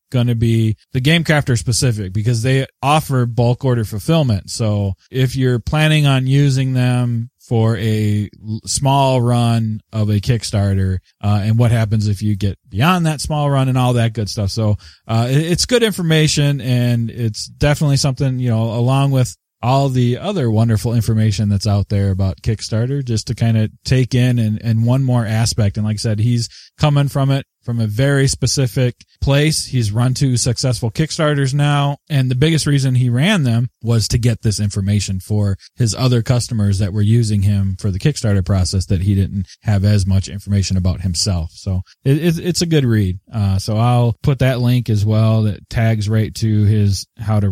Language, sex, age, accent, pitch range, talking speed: English, male, 20-39, American, 105-135 Hz, 190 wpm